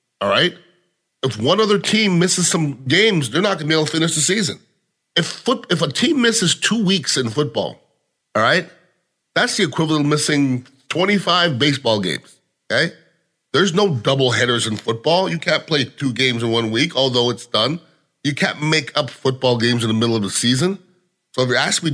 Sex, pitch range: male, 130-180 Hz